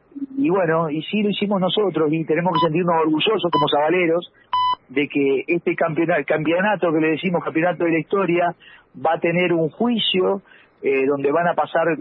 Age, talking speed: 50-69, 180 wpm